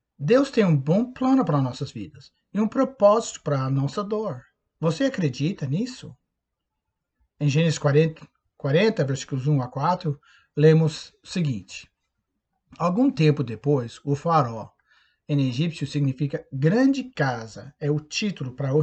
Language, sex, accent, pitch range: Portuguese, male, Brazilian, 145-185 Hz